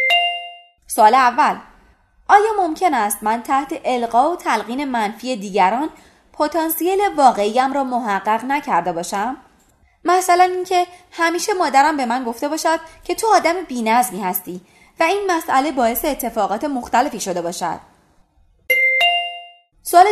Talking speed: 120 wpm